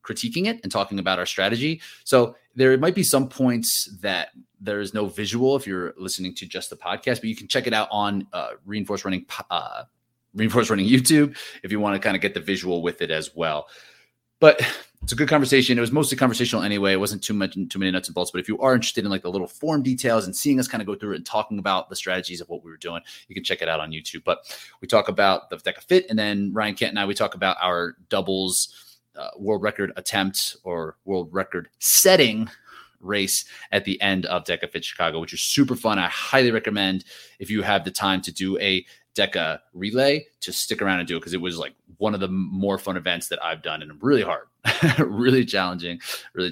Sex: male